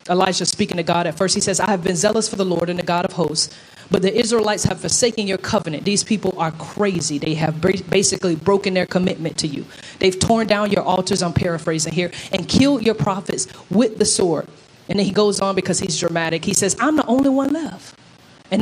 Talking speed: 225 wpm